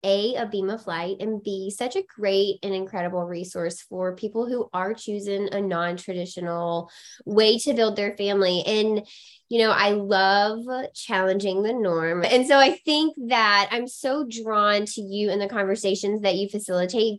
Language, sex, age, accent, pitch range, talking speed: English, female, 20-39, American, 185-235 Hz, 170 wpm